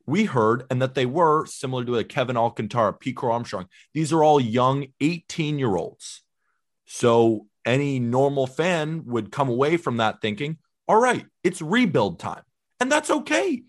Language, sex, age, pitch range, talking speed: English, male, 30-49, 120-180 Hz, 160 wpm